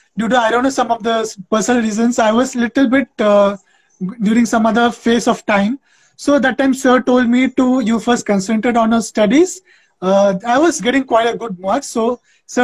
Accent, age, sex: native, 20-39, male